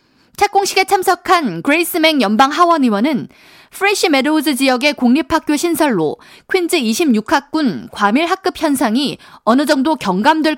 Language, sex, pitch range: Korean, female, 240-335 Hz